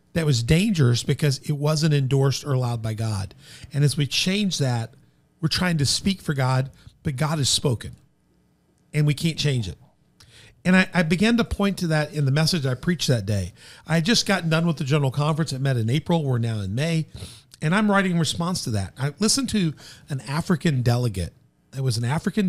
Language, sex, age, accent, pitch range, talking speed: English, male, 50-69, American, 120-160 Hz, 215 wpm